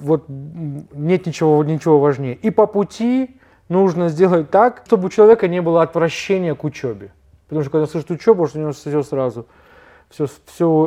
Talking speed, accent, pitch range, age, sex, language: 170 wpm, native, 140-170 Hz, 20-39, male, Russian